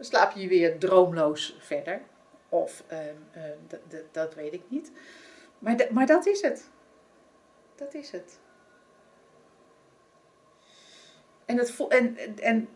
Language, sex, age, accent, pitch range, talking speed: Dutch, female, 40-59, Dutch, 175-240 Hz, 130 wpm